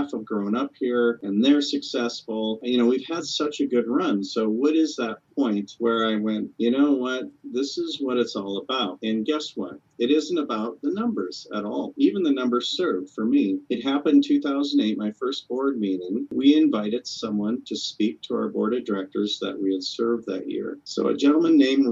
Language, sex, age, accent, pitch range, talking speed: English, male, 40-59, American, 105-145 Hz, 210 wpm